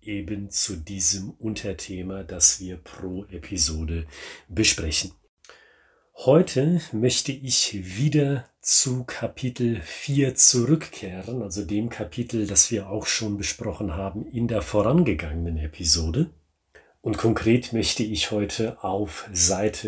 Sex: male